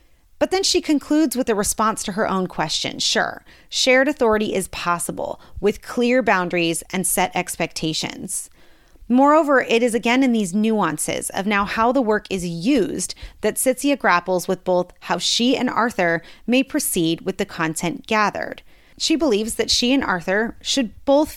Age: 30-49